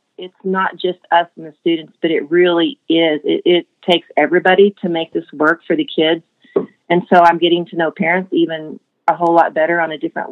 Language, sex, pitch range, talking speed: English, female, 160-190 Hz, 215 wpm